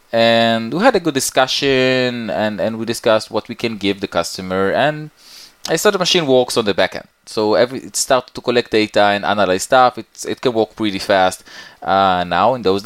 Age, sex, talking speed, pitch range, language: 20-39, male, 210 wpm, 105-145 Hz, English